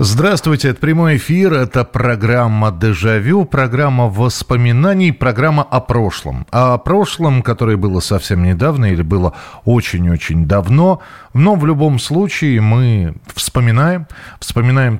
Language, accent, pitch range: Russian, native, 100-135 Hz